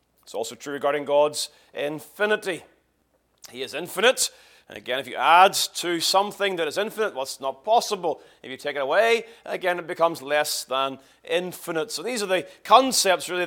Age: 30-49